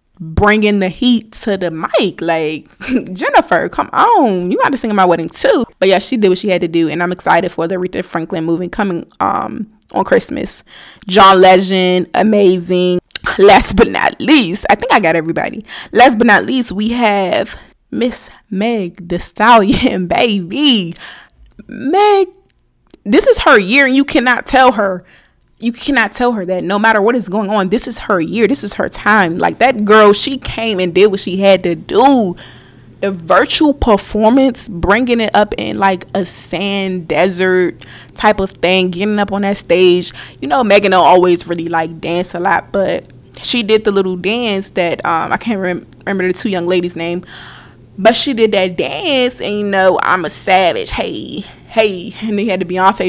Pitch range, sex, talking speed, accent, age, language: 180-225 Hz, female, 190 wpm, American, 20-39, English